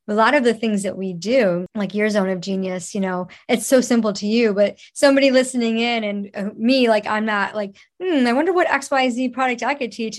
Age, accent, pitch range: 30-49, American, 195-245 Hz